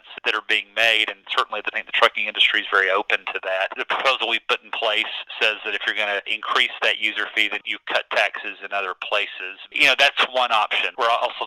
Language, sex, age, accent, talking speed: English, male, 30-49, American, 240 wpm